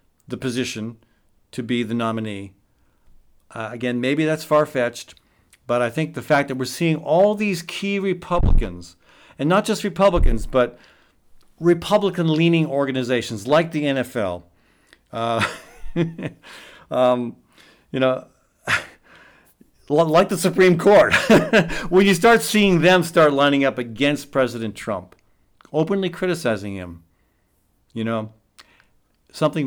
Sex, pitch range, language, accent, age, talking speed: male, 115-175 Hz, English, American, 50-69, 115 wpm